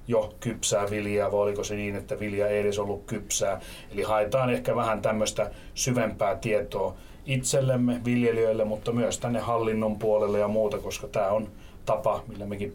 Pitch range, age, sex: 105-120 Hz, 30-49, male